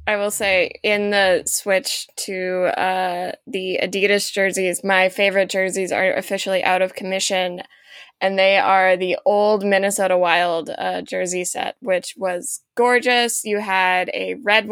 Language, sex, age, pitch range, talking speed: English, female, 10-29, 185-210 Hz, 145 wpm